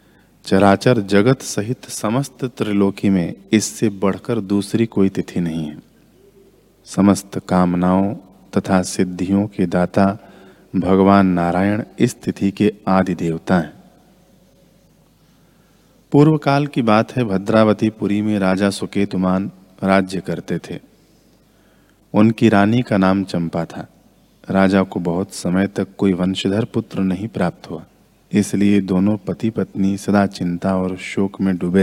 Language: Hindi